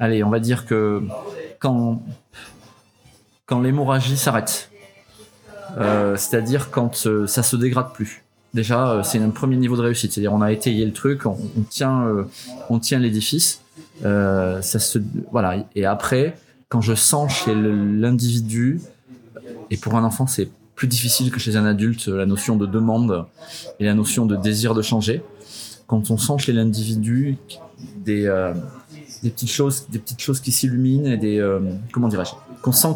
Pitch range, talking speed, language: 105-125 Hz, 170 wpm, French